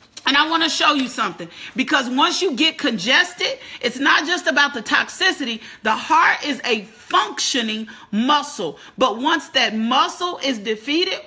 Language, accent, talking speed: English, American, 160 wpm